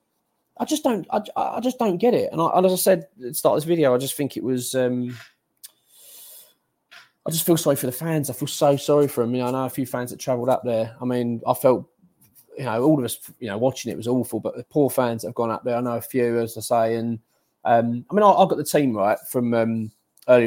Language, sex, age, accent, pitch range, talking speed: English, male, 20-39, British, 115-155 Hz, 280 wpm